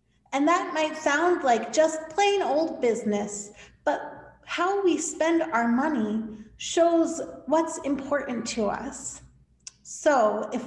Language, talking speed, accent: English, 125 wpm, American